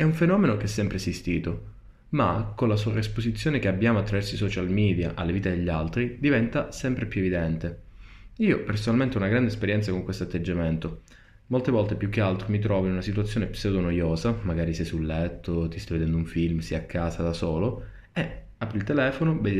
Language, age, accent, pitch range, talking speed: Italian, 20-39, native, 90-115 Hz, 200 wpm